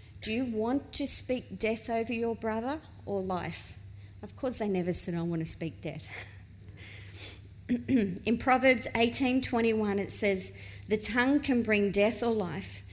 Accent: Australian